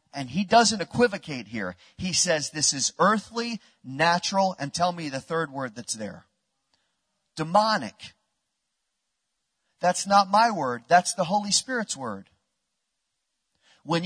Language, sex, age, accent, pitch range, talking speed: English, male, 40-59, American, 150-215 Hz, 130 wpm